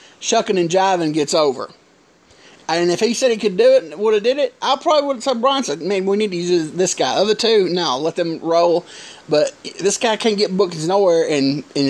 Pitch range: 175-245 Hz